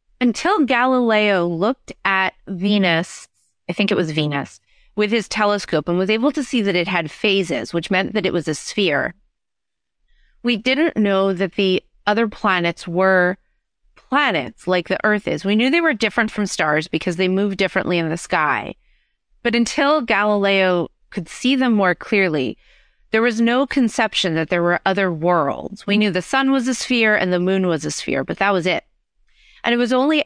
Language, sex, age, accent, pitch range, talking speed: English, female, 30-49, American, 175-220 Hz, 185 wpm